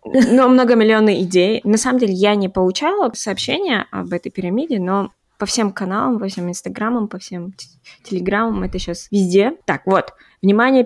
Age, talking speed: 20-39, 165 wpm